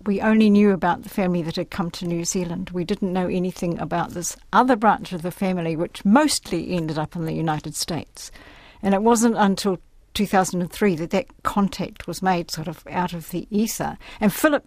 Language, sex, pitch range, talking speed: English, female, 175-215 Hz, 200 wpm